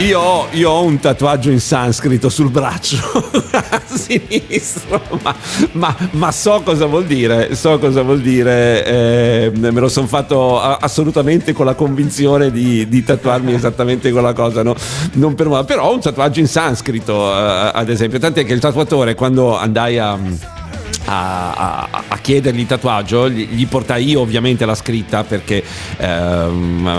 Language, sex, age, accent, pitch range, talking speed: Italian, male, 50-69, native, 115-145 Hz, 155 wpm